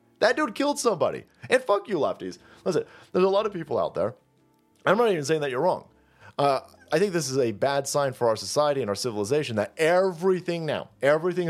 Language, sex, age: English, male, 30-49